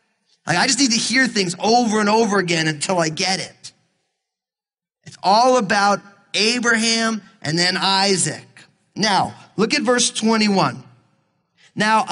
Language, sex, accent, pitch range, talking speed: English, male, American, 175-245 Hz, 140 wpm